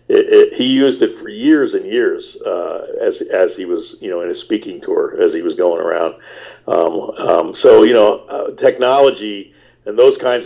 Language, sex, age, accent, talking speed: English, male, 50-69, American, 200 wpm